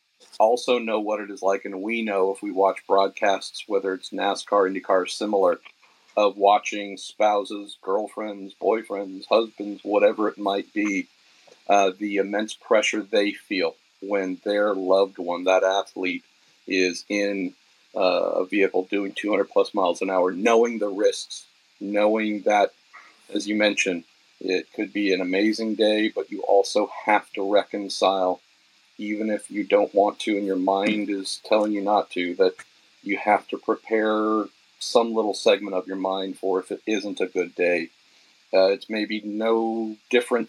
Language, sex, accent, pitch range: English, male, American, 100-115 Hz